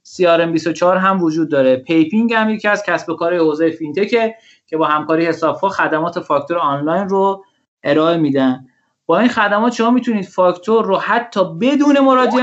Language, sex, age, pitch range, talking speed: Persian, male, 30-49, 160-210 Hz, 150 wpm